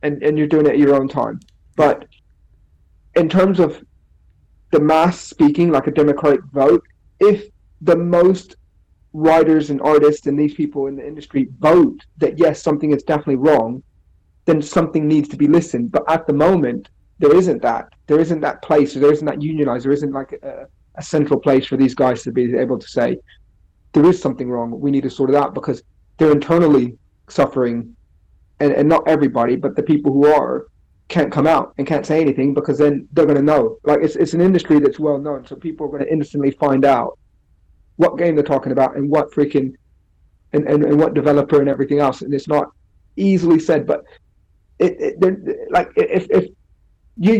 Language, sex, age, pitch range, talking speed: English, male, 30-49, 130-155 Hz, 195 wpm